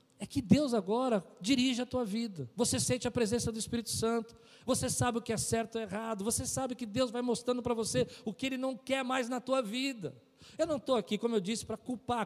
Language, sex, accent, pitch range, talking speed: Portuguese, male, Brazilian, 210-265 Hz, 240 wpm